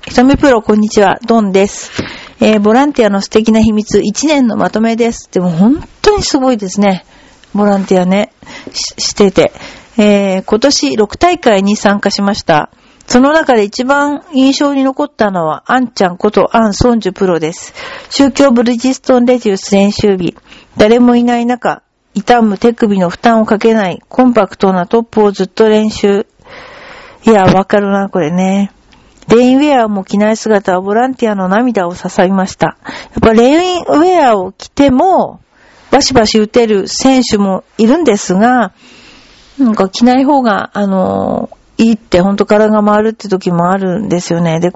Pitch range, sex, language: 200-250 Hz, female, Japanese